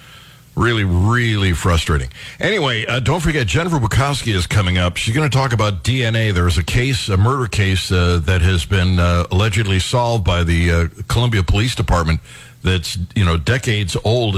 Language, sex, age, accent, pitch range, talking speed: English, male, 60-79, American, 90-125 Hz, 180 wpm